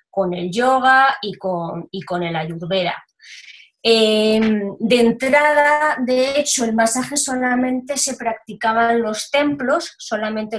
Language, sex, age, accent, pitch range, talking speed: Spanish, female, 20-39, Spanish, 210-245 Hz, 125 wpm